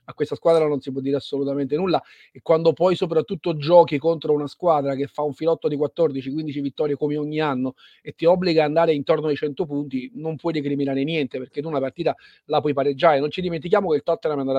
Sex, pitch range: male, 145-170 Hz